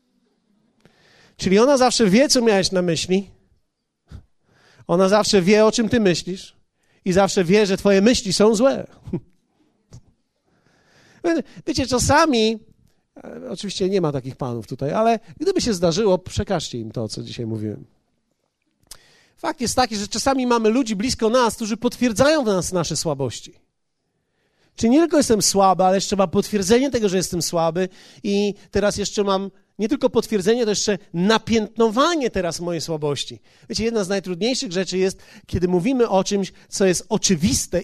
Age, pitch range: 40-59, 175-225 Hz